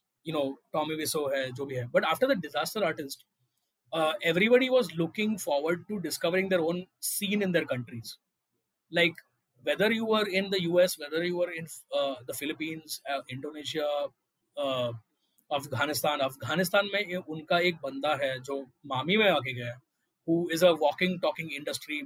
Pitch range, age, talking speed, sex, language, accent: 140-190 Hz, 30-49, 130 wpm, male, Hindi, native